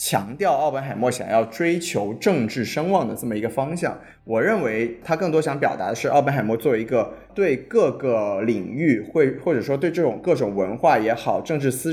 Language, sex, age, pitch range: Chinese, male, 20-39, 115-160 Hz